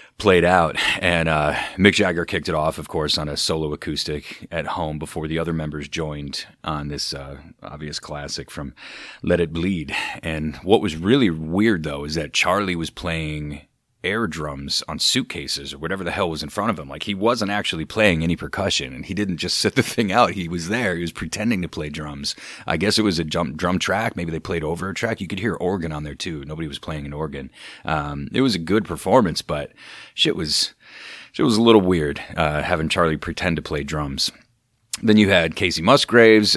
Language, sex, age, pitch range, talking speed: English, male, 30-49, 75-90 Hz, 215 wpm